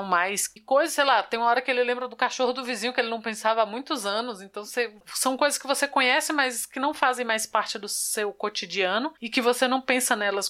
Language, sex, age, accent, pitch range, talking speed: Portuguese, female, 20-39, Brazilian, 195-245 Hz, 250 wpm